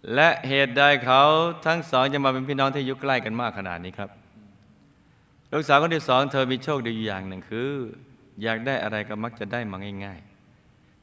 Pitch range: 100-130 Hz